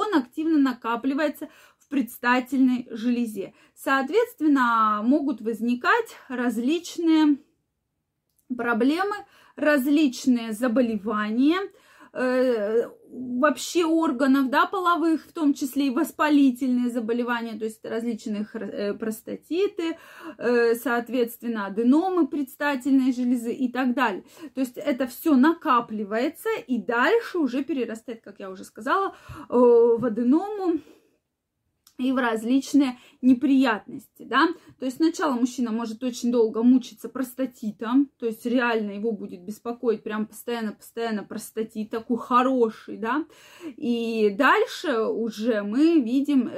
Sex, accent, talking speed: female, native, 105 wpm